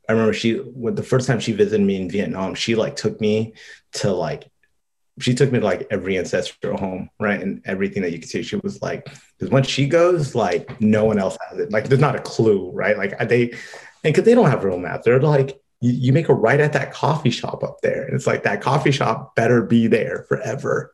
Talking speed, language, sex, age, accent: 240 wpm, English, male, 30-49, American